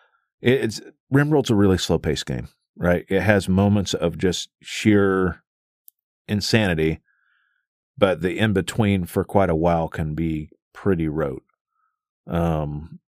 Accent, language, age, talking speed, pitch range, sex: American, English, 40-59, 130 wpm, 90-115 Hz, male